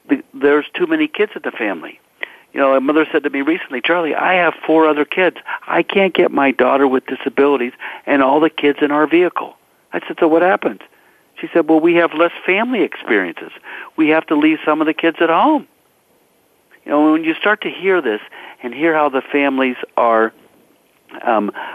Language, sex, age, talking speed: English, male, 60-79, 200 wpm